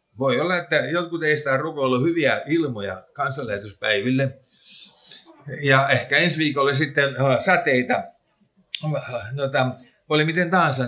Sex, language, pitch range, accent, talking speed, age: male, Finnish, 135-190 Hz, native, 115 wpm, 50-69